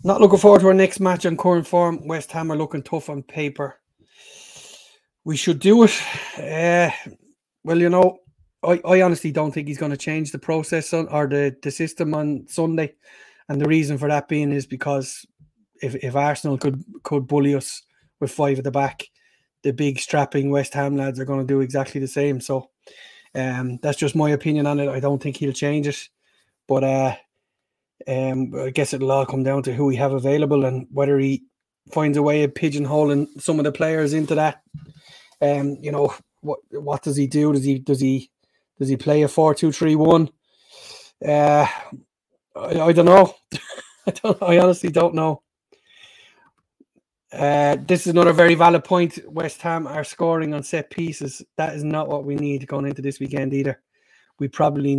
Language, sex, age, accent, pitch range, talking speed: English, male, 30-49, Irish, 140-165 Hz, 190 wpm